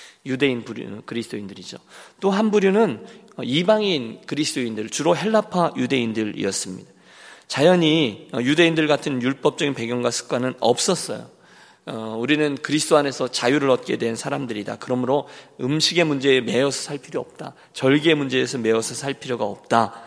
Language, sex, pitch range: Korean, male, 115-155 Hz